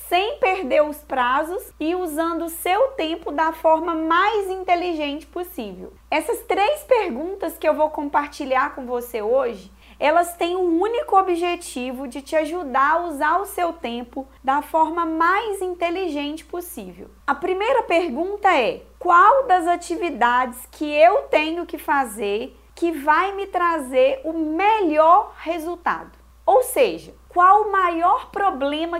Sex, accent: female, Brazilian